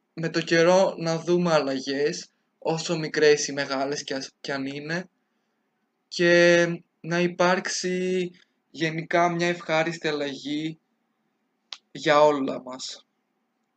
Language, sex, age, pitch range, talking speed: Greek, male, 20-39, 150-175 Hz, 100 wpm